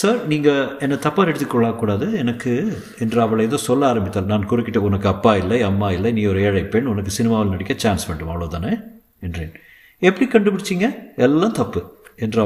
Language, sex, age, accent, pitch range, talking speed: Tamil, male, 50-69, native, 105-135 Hz, 165 wpm